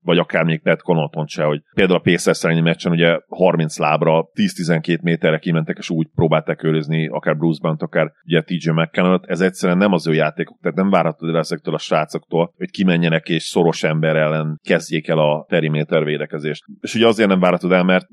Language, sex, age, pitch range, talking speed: Hungarian, male, 30-49, 80-90 Hz, 190 wpm